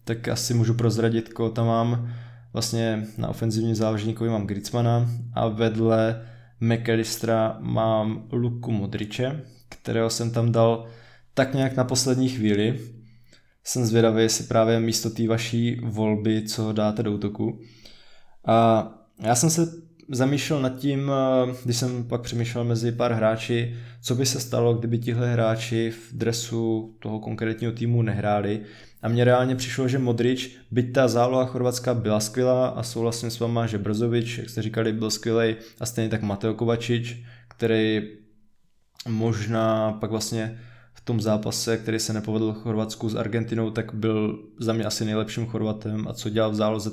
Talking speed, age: 155 wpm, 20-39